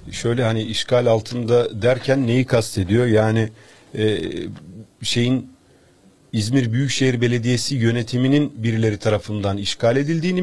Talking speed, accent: 105 wpm, native